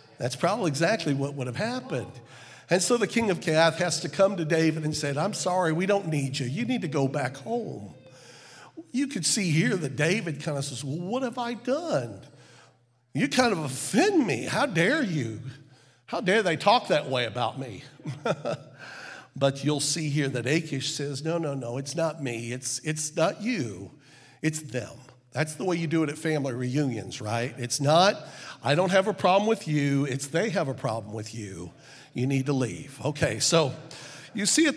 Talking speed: 200 wpm